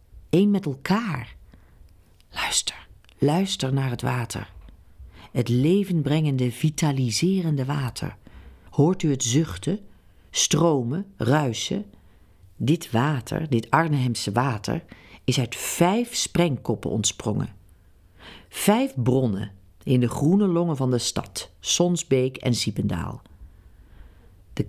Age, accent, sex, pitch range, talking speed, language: 40-59, Dutch, female, 105-170 Hz, 100 wpm, Dutch